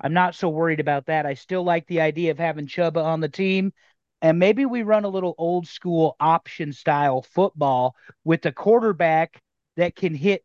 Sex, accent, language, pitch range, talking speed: male, American, English, 140-175 Hz, 195 wpm